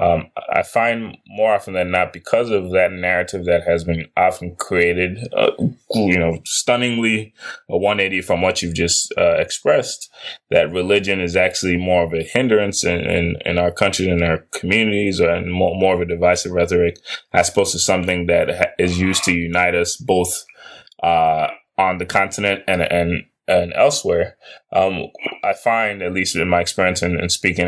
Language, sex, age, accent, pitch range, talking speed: English, male, 20-39, American, 85-95 Hz, 175 wpm